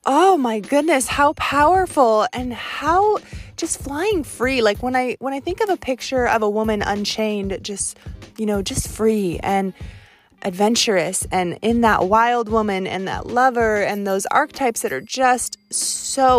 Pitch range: 195-255 Hz